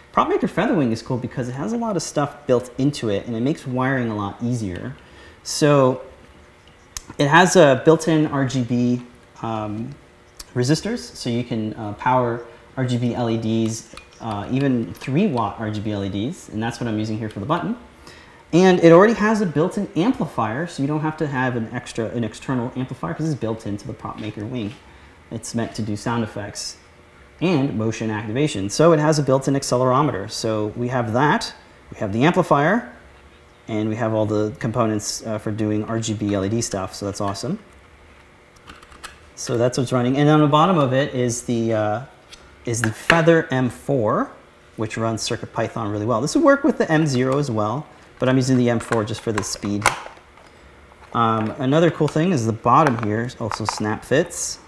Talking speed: 180 wpm